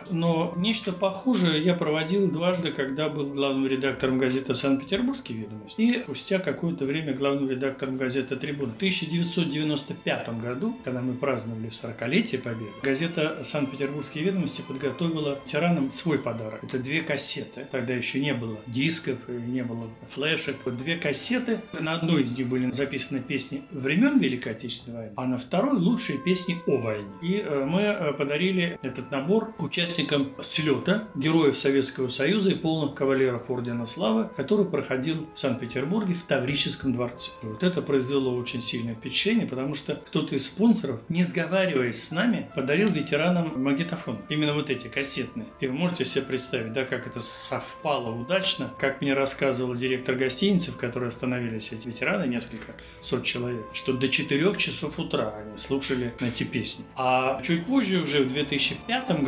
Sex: male